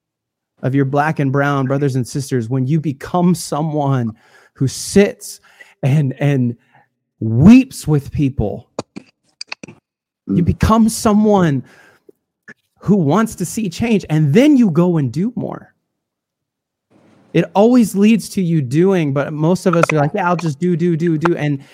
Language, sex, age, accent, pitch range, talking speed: English, male, 20-39, American, 125-165 Hz, 150 wpm